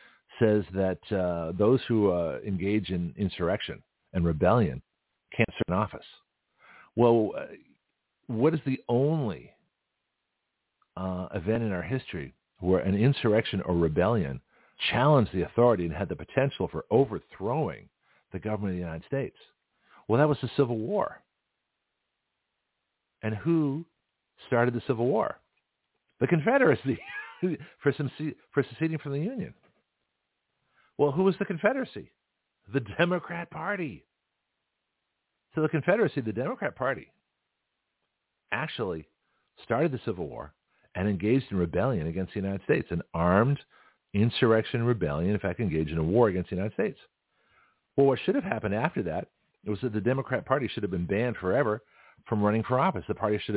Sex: male